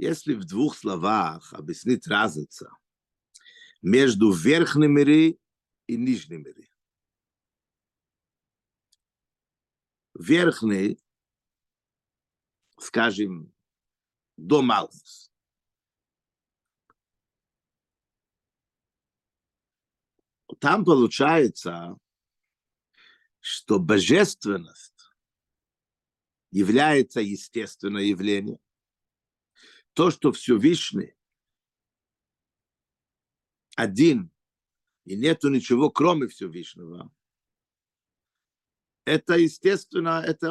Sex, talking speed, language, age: male, 55 wpm, Russian, 50-69